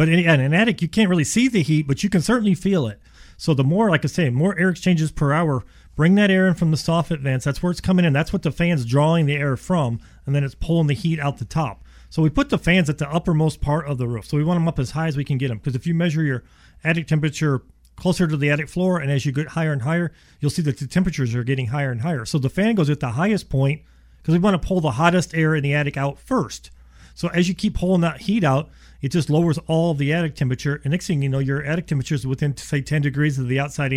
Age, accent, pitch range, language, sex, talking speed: 40-59, American, 140-170 Hz, English, male, 285 wpm